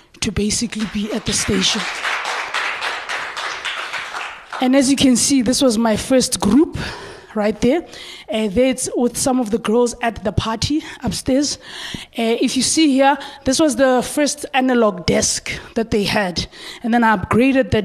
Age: 20-39